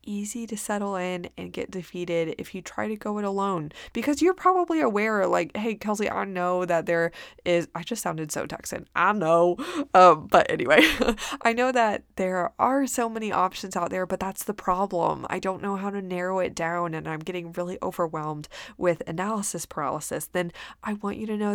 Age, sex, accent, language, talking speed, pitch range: 20-39, female, American, English, 200 wpm, 175-210 Hz